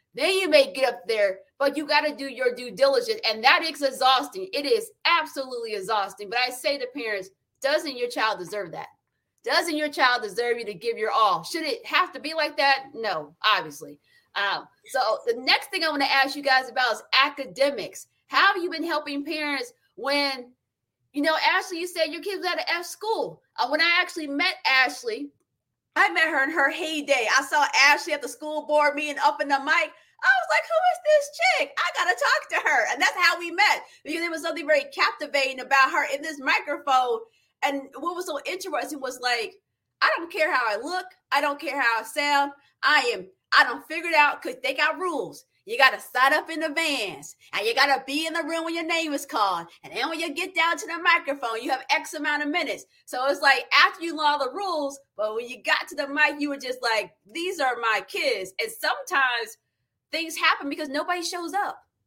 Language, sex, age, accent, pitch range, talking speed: English, female, 30-49, American, 270-340 Hz, 220 wpm